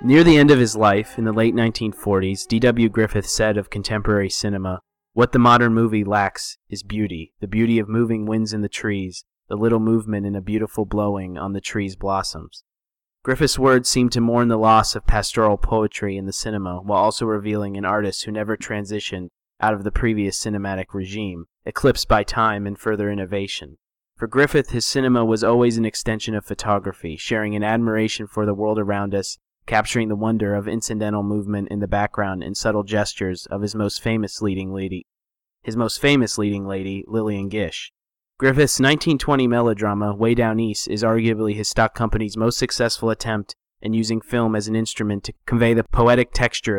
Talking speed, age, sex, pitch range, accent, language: 185 wpm, 30-49, male, 100-115 Hz, American, English